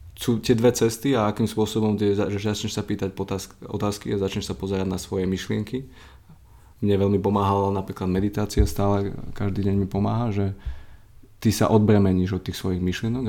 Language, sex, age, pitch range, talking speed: Slovak, male, 20-39, 95-110 Hz, 165 wpm